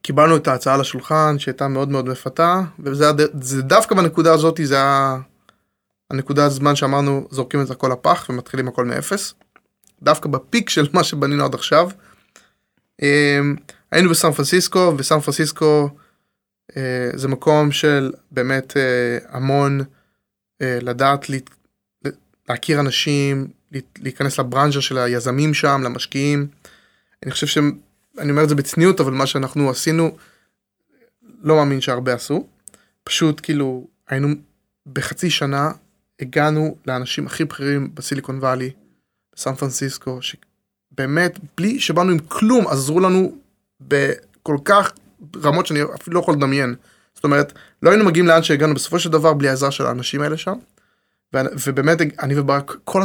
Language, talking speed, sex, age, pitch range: Hebrew, 125 wpm, male, 20-39, 135-160 Hz